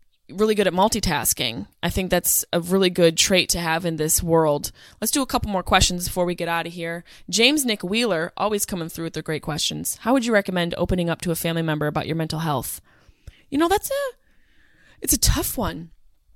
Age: 20-39